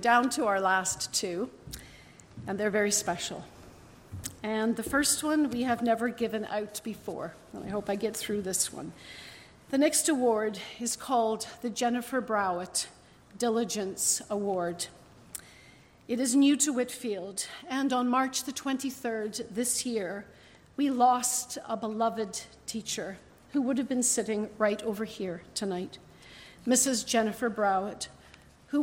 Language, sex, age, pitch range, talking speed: English, female, 50-69, 205-255 Hz, 135 wpm